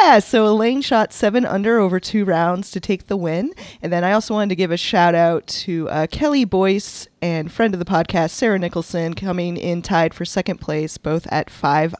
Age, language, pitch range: 20-39, English, 165-210 Hz